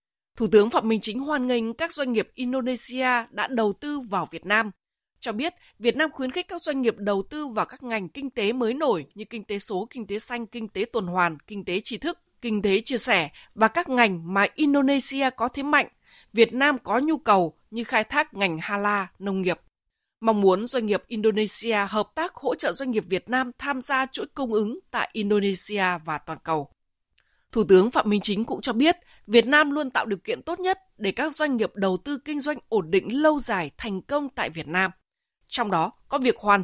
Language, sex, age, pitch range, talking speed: Vietnamese, female, 20-39, 205-275 Hz, 220 wpm